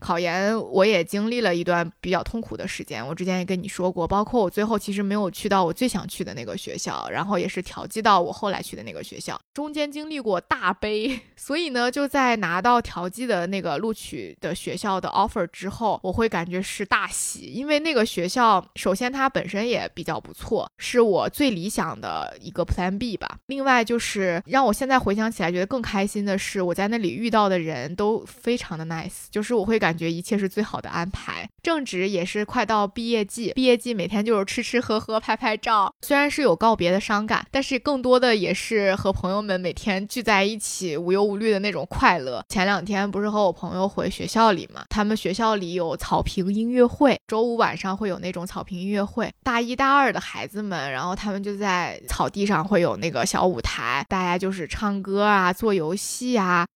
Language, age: Chinese, 20-39